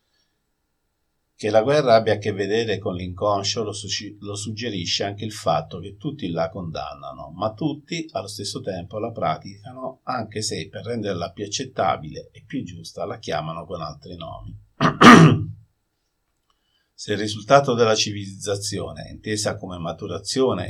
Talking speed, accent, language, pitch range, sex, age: 135 wpm, native, Italian, 90-110 Hz, male, 50-69